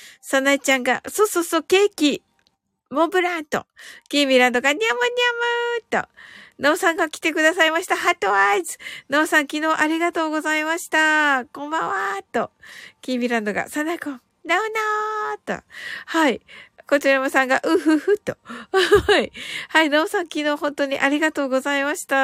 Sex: female